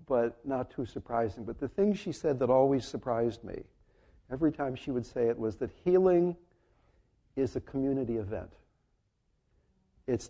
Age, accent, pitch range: 60-79, American, 105-130 Hz